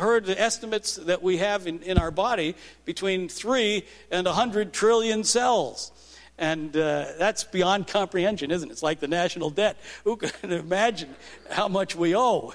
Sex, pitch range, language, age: male, 155-215 Hz, English, 50-69